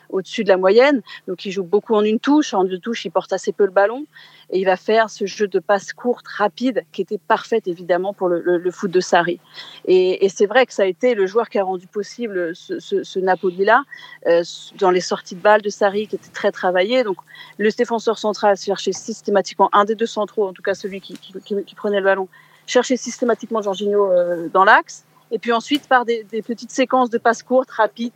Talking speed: 230 wpm